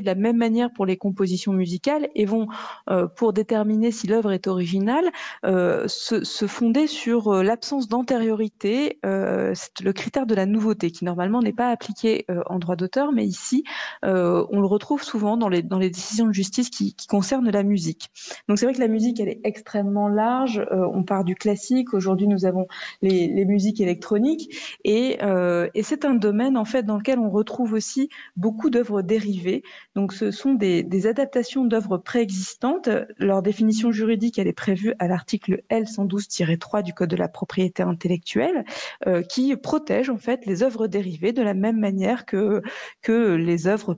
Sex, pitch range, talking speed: female, 190-235 Hz, 185 wpm